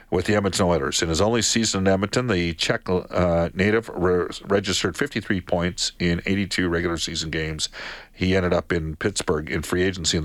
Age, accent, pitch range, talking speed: 50-69, American, 85-110 Hz, 180 wpm